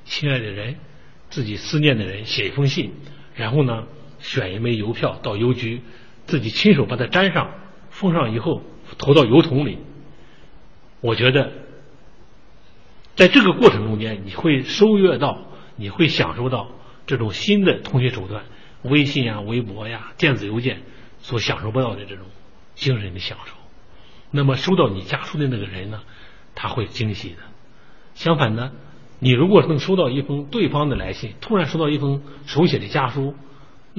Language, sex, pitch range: Chinese, male, 105-140 Hz